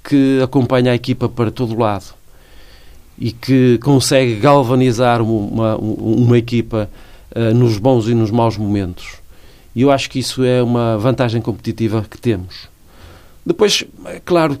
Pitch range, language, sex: 110-140 Hz, Portuguese, male